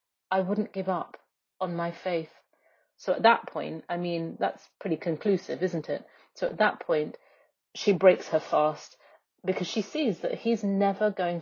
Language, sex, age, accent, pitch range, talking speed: English, female, 30-49, British, 165-200 Hz, 175 wpm